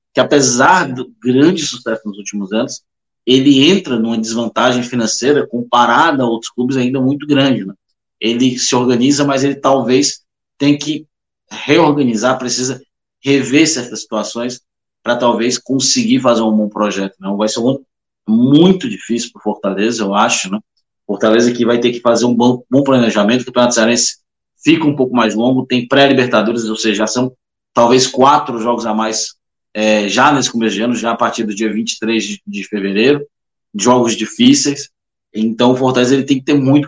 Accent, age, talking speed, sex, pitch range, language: Brazilian, 20-39, 170 wpm, male, 115-135 Hz, Portuguese